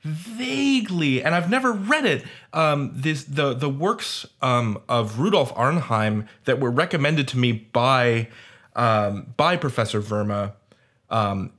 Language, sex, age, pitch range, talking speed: English, male, 20-39, 115-145 Hz, 135 wpm